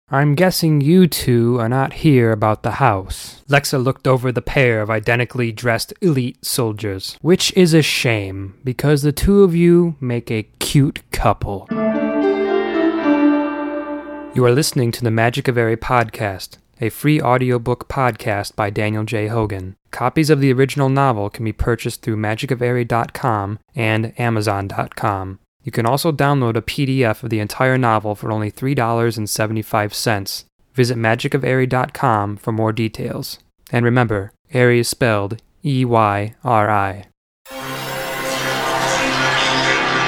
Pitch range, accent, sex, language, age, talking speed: 110-140 Hz, American, male, English, 20-39, 130 wpm